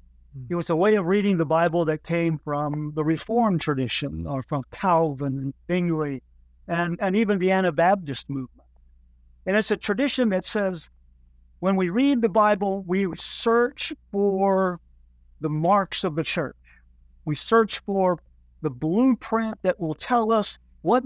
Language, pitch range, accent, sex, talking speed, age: English, 135-200 Hz, American, male, 150 wpm, 50-69